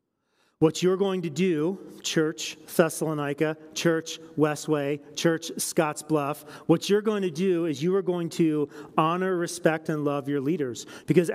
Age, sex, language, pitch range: 40-59, male, English, 150-185 Hz